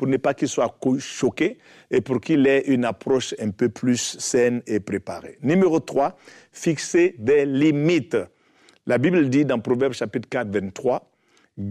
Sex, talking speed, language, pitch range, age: male, 170 wpm, French, 110-135 Hz, 50-69